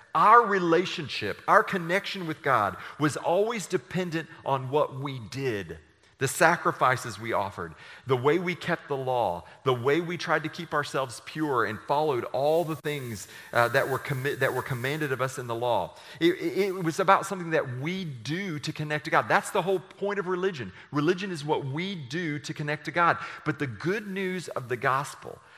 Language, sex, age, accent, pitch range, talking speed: English, male, 40-59, American, 125-165 Hz, 195 wpm